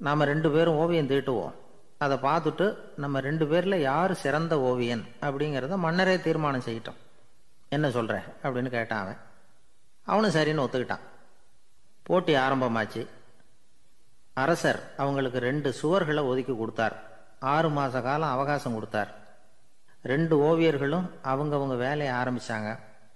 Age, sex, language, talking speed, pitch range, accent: 30-49, male, Tamil, 110 wpm, 120-150 Hz, native